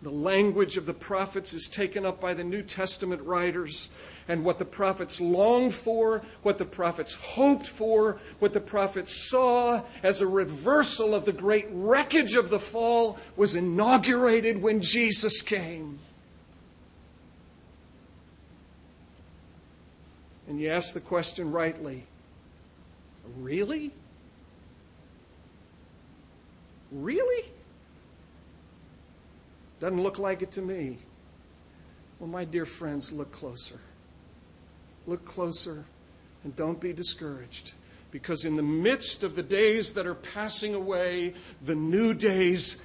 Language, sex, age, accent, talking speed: English, male, 50-69, American, 120 wpm